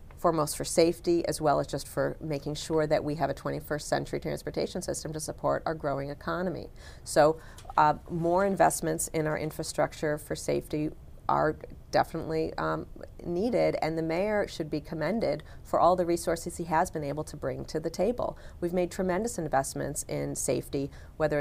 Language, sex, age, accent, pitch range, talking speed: English, female, 40-59, American, 145-170 Hz, 175 wpm